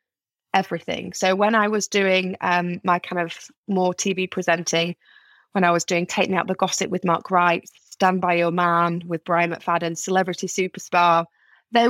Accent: British